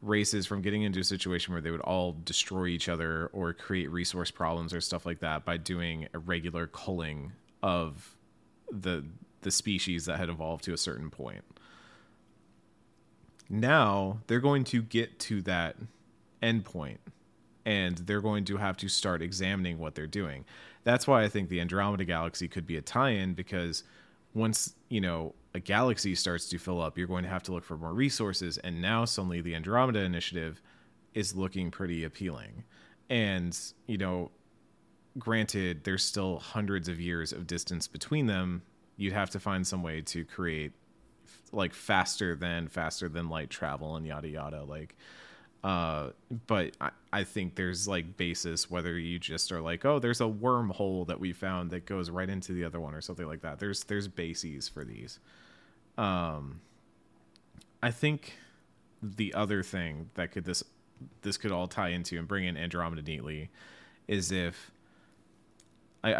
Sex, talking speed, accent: male, 170 wpm, American